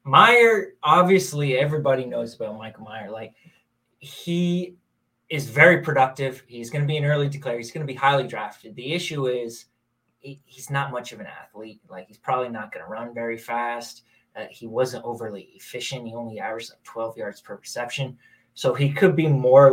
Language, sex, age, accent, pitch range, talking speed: English, male, 20-39, American, 115-150 Hz, 185 wpm